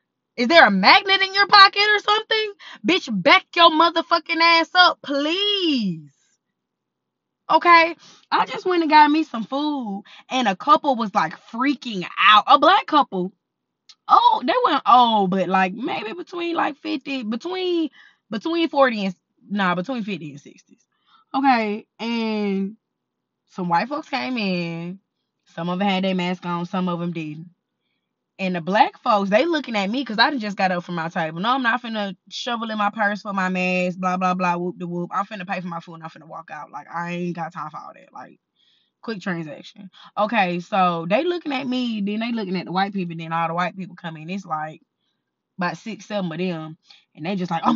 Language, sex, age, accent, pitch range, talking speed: English, female, 10-29, American, 180-280 Hz, 200 wpm